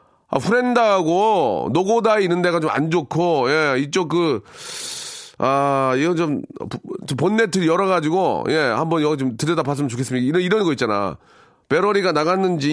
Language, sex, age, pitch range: Korean, male, 30-49, 140-185 Hz